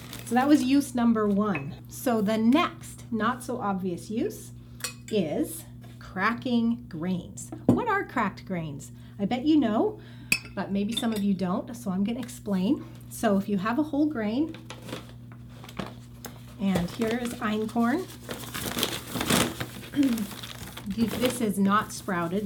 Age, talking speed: 30-49, 130 wpm